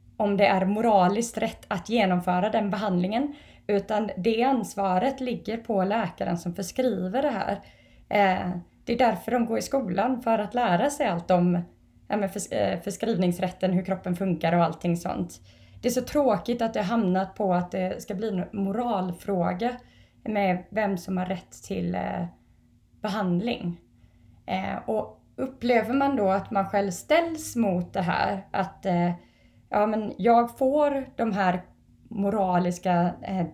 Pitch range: 175-220 Hz